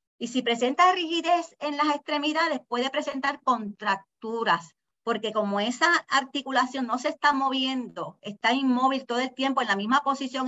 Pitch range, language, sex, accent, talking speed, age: 220-290 Hz, Spanish, female, American, 155 wpm, 40-59